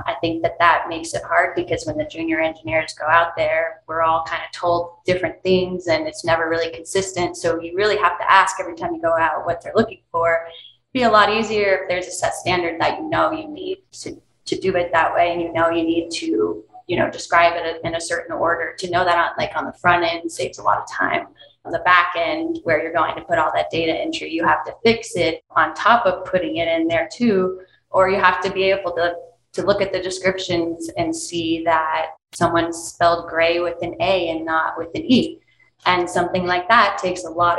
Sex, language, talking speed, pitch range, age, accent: female, English, 240 wpm, 165-200 Hz, 20-39, American